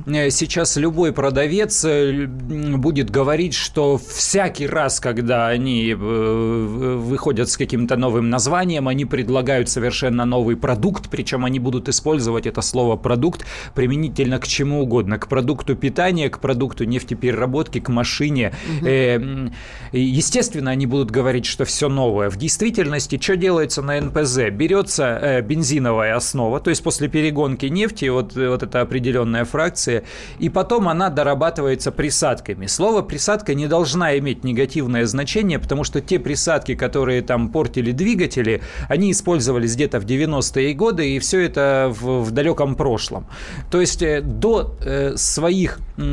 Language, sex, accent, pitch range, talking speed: Russian, male, native, 125-160 Hz, 130 wpm